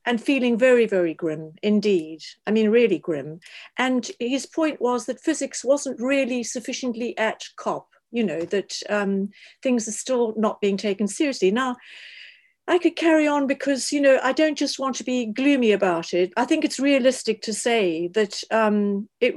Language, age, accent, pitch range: Danish, 50-69, British, 210-260 Hz